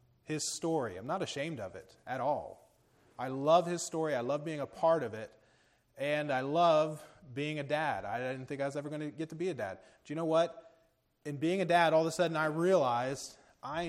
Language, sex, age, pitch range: English, male, 30-49, 145-185 Hz